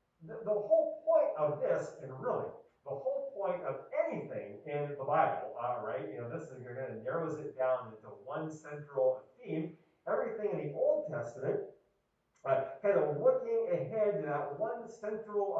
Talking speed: 175 wpm